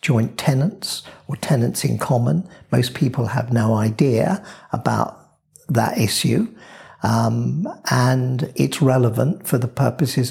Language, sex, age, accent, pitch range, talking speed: English, male, 60-79, British, 115-140 Hz, 120 wpm